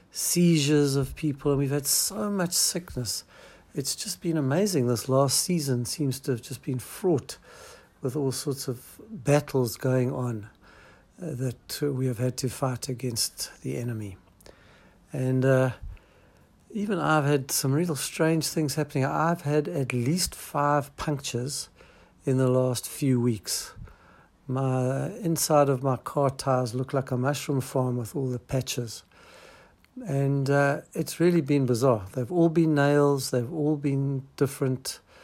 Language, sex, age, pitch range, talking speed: English, male, 60-79, 125-145 Hz, 155 wpm